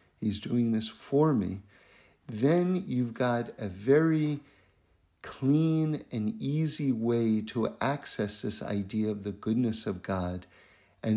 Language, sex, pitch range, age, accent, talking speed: English, male, 105-140 Hz, 50-69, American, 130 wpm